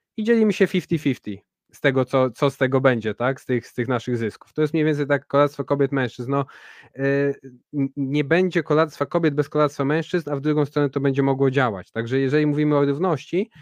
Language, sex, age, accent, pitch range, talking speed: Polish, male, 20-39, native, 130-155 Hz, 210 wpm